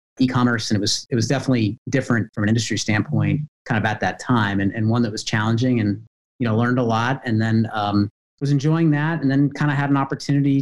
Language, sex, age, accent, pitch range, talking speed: English, male, 30-49, American, 105-125 Hz, 235 wpm